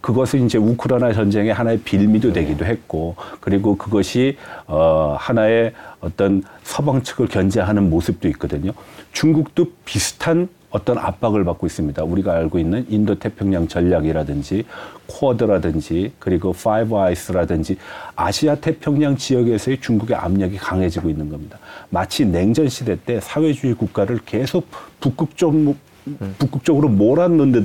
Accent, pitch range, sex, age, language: native, 95-135 Hz, male, 40-59, Korean